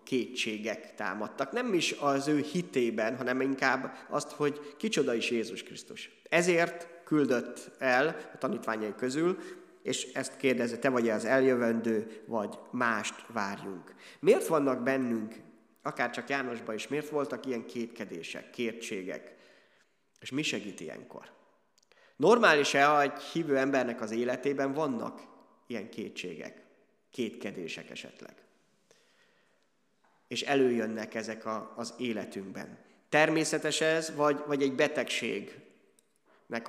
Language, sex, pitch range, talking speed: Hungarian, male, 120-150 Hz, 115 wpm